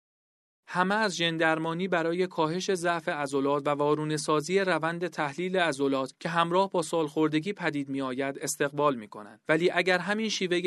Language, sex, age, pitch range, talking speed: Persian, male, 40-59, 145-180 Hz, 135 wpm